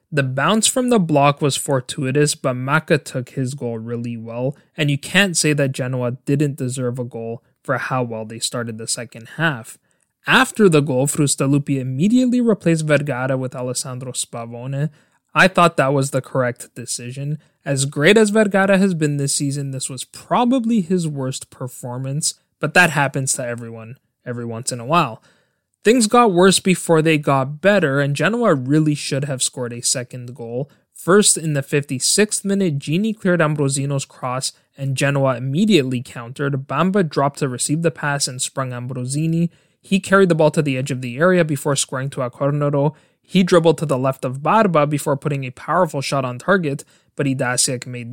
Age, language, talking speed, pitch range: 20-39, English, 175 wpm, 130-165 Hz